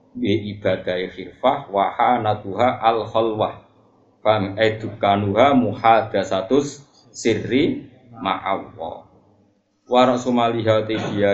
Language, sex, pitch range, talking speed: Indonesian, male, 95-120 Hz, 75 wpm